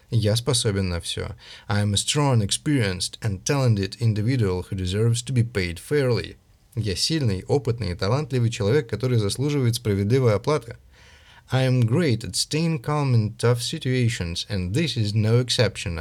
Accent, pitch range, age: native, 100-130 Hz, 30-49